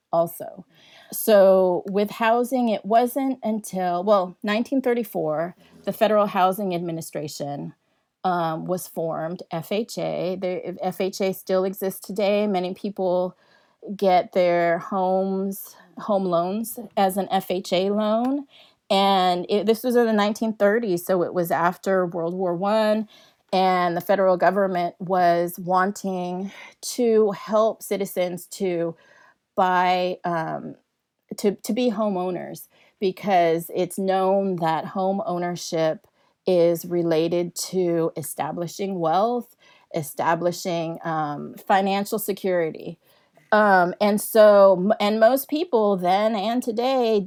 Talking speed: 110 wpm